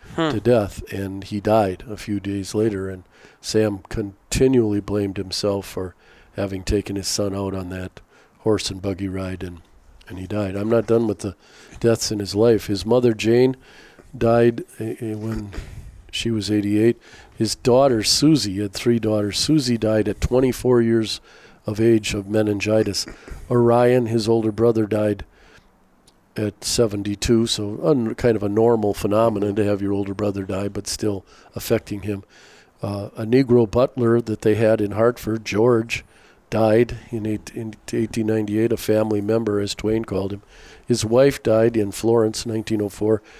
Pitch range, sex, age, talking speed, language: 100-115 Hz, male, 50-69, 155 wpm, English